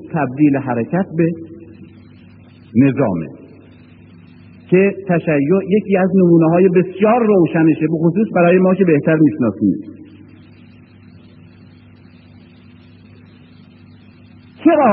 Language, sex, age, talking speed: Persian, male, 50-69, 80 wpm